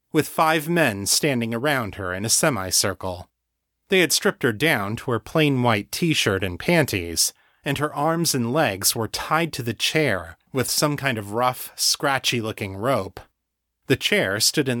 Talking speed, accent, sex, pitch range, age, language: 170 wpm, American, male, 95-140 Hz, 30-49, English